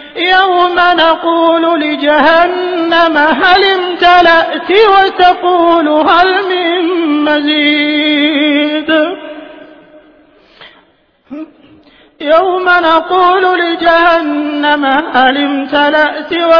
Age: 30-49